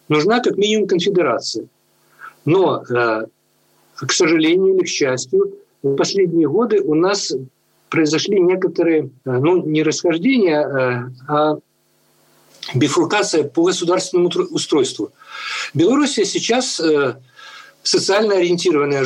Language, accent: Russian, native